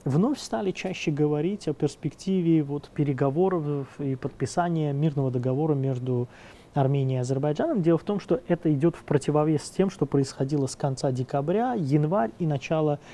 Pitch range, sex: 140-185 Hz, male